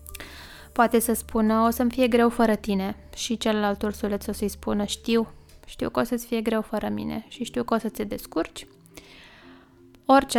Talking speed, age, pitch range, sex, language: 180 wpm, 20-39, 195-245 Hz, female, Romanian